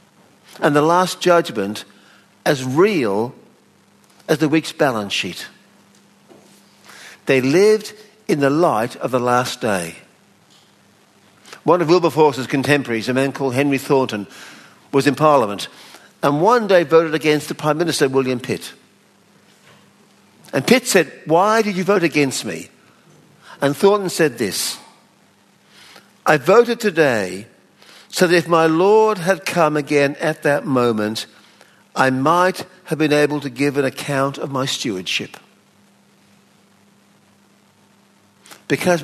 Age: 50-69